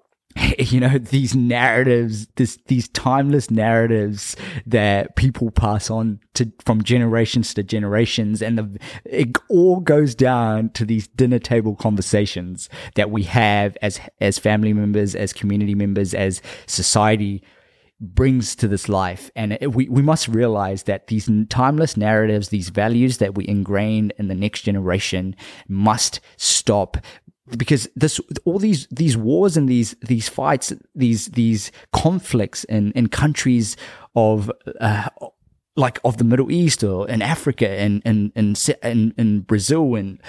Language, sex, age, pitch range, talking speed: English, male, 20-39, 105-130 Hz, 140 wpm